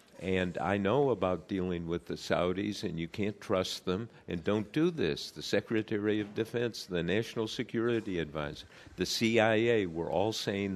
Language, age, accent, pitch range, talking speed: English, 50-69, American, 85-105 Hz, 165 wpm